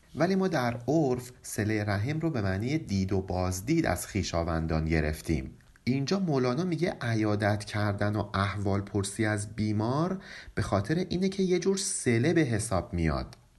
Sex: male